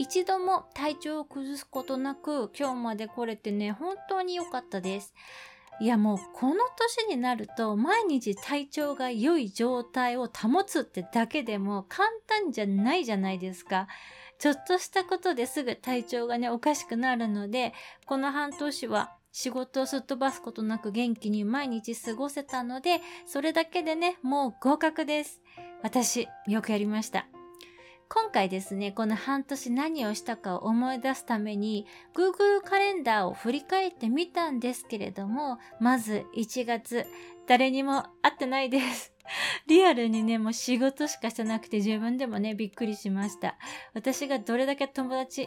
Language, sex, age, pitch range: Japanese, female, 20-39, 220-300 Hz